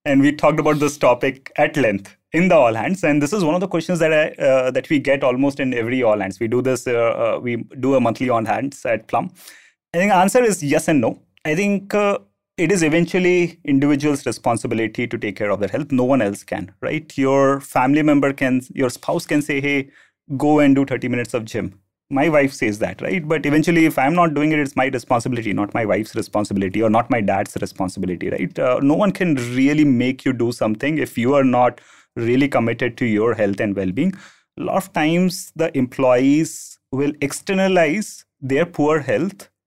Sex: male